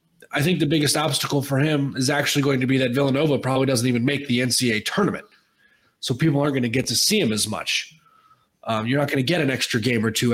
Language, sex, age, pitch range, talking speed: English, male, 20-39, 110-135 Hz, 250 wpm